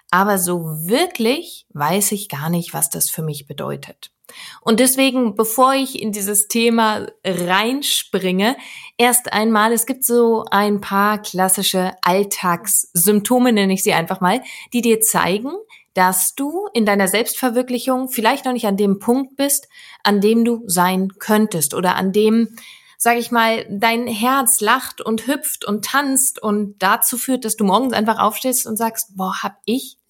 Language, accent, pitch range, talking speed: German, German, 200-250 Hz, 160 wpm